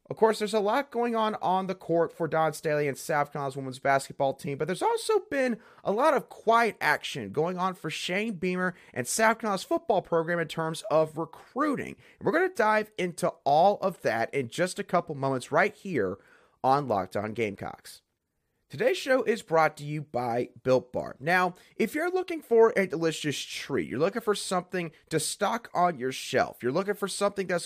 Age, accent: 30-49, American